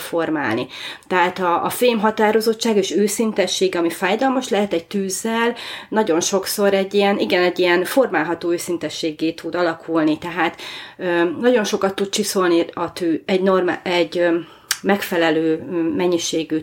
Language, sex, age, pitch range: Hungarian, female, 30-49, 170-205 Hz